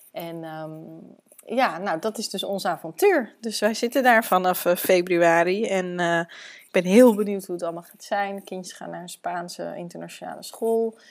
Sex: female